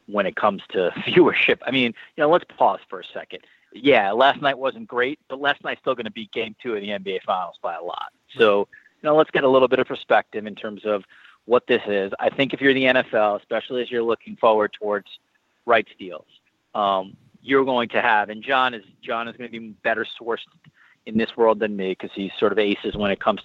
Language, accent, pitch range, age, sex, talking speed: English, American, 105-130 Hz, 30-49, male, 240 wpm